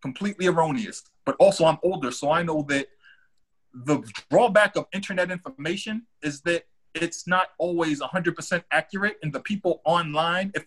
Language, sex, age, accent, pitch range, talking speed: English, male, 30-49, American, 150-195 Hz, 165 wpm